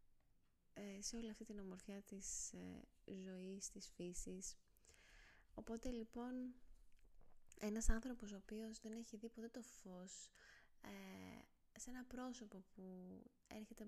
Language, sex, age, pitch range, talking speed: Greek, female, 20-39, 190-245 Hz, 110 wpm